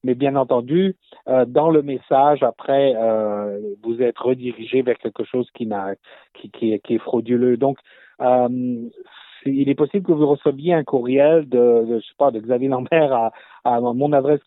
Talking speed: 180 wpm